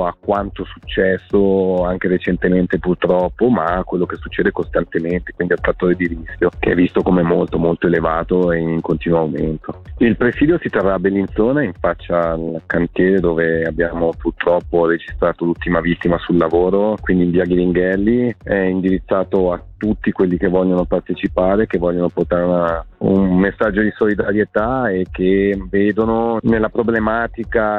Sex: male